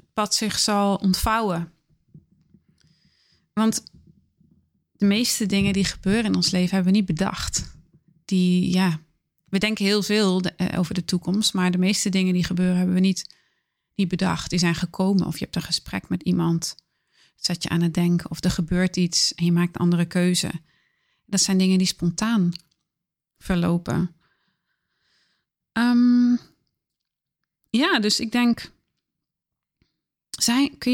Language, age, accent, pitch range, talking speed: Dutch, 30-49, Dutch, 180-210 Hz, 145 wpm